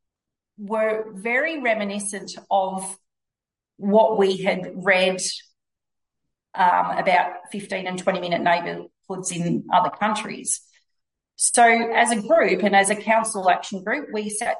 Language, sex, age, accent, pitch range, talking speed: English, female, 40-59, Australian, 185-220 Hz, 120 wpm